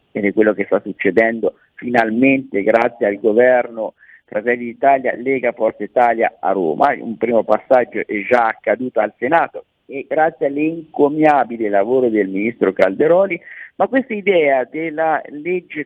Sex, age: male, 50-69